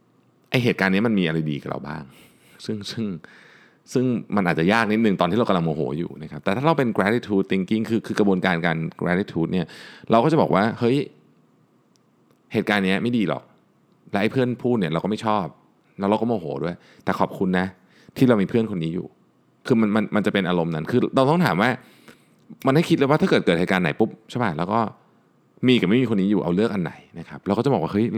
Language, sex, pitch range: Thai, male, 85-115 Hz